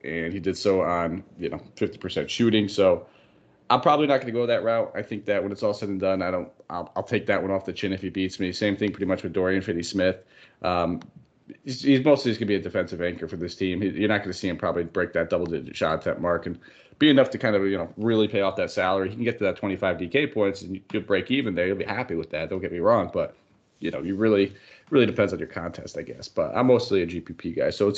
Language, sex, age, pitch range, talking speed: English, male, 30-49, 90-105 Hz, 285 wpm